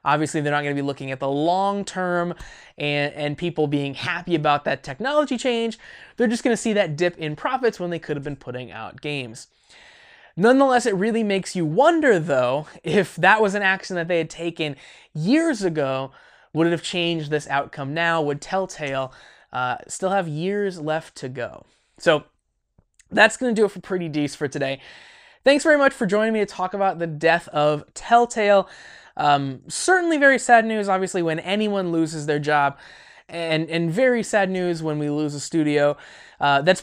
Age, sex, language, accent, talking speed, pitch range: 20-39, male, English, American, 190 wpm, 150-215 Hz